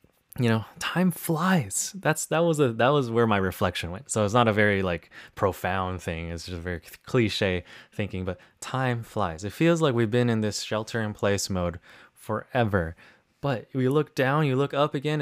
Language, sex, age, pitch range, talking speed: English, male, 20-39, 105-145 Hz, 200 wpm